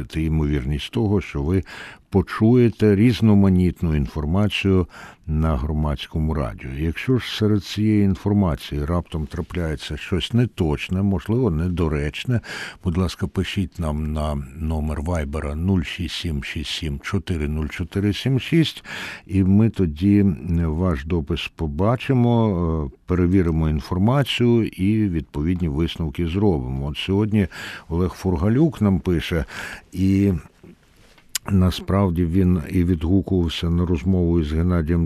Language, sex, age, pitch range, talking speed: Ukrainian, male, 60-79, 80-100 Hz, 95 wpm